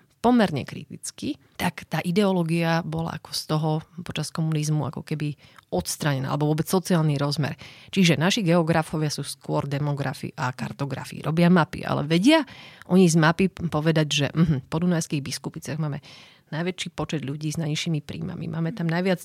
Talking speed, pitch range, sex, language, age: 150 wpm, 155-180 Hz, female, Slovak, 30-49